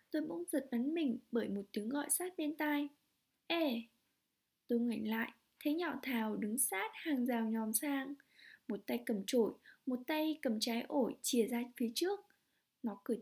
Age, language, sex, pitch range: 20-39, Vietnamese, female, 235-310 Hz